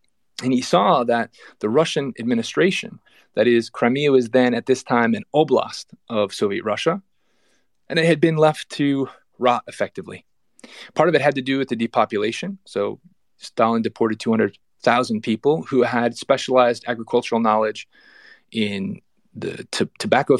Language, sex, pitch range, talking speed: English, male, 115-150 Hz, 150 wpm